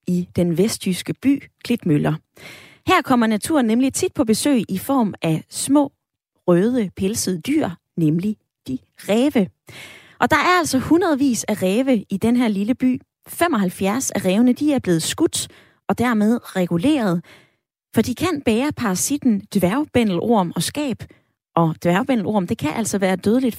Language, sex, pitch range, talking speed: Danish, female, 180-255 Hz, 150 wpm